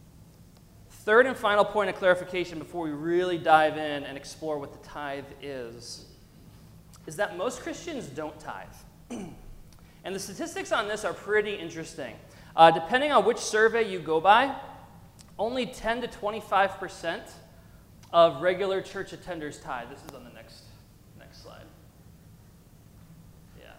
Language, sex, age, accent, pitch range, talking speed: English, male, 30-49, American, 150-195 Hz, 145 wpm